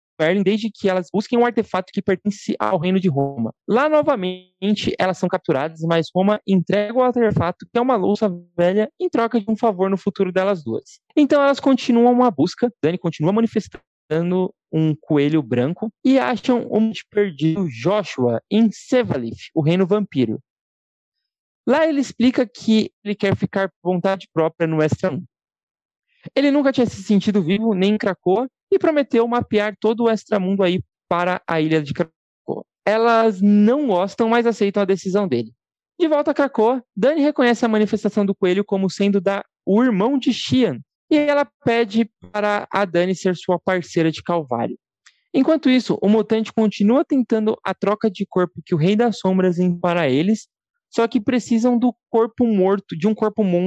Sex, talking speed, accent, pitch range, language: male, 170 wpm, Brazilian, 185-235 Hz, Portuguese